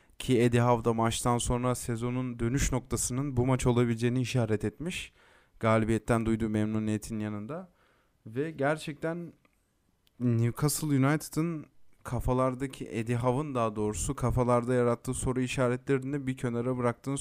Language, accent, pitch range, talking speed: Turkish, native, 120-135 Hz, 120 wpm